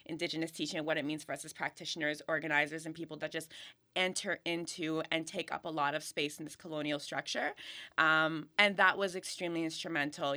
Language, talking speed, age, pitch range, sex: English, 195 wpm, 20-39, 155-180 Hz, female